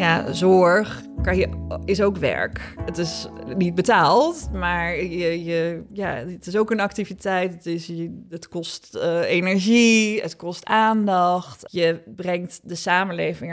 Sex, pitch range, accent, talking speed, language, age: female, 170-195 Hz, Dutch, 145 wpm, Dutch, 20-39